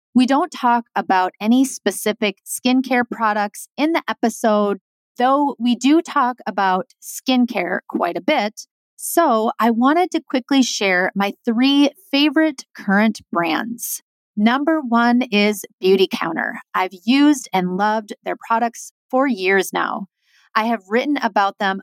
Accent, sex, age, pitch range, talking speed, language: American, female, 30-49, 205-265 Hz, 135 wpm, English